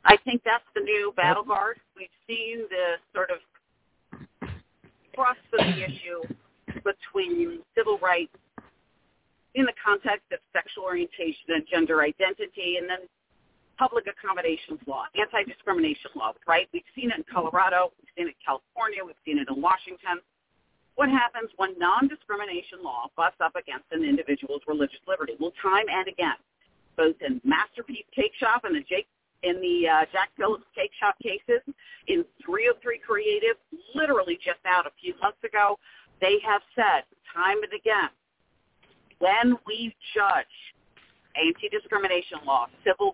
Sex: female